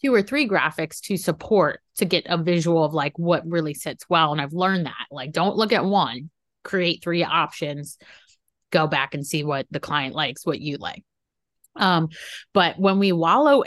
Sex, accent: female, American